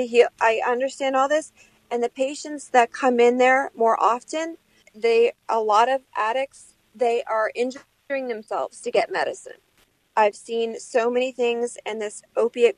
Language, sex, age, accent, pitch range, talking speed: English, female, 40-59, American, 230-275 Hz, 160 wpm